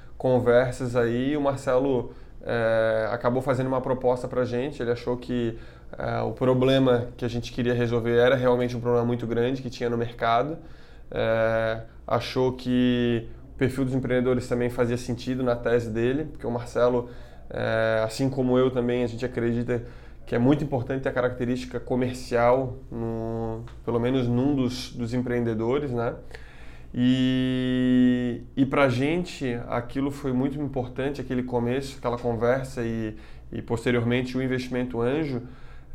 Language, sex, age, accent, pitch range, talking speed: Portuguese, male, 20-39, Brazilian, 120-130 Hz, 150 wpm